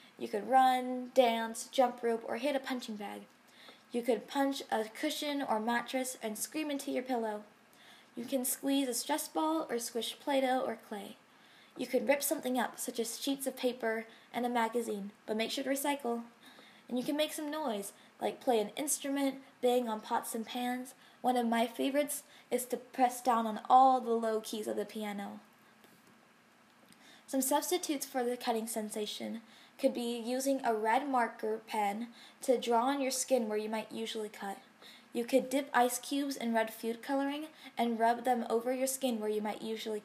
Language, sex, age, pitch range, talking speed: English, female, 10-29, 225-270 Hz, 185 wpm